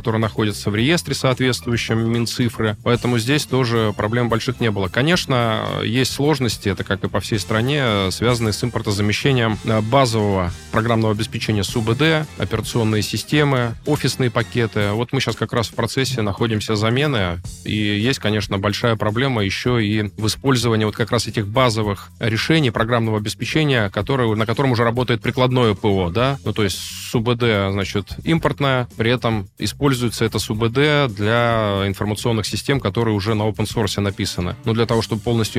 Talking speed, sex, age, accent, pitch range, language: 155 wpm, male, 20-39, native, 105-125 Hz, Russian